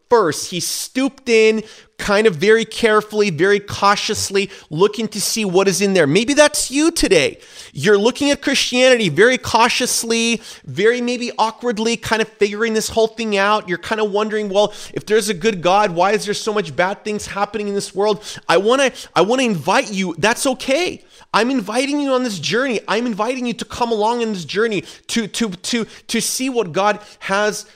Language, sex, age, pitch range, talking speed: English, male, 30-49, 190-230 Hz, 195 wpm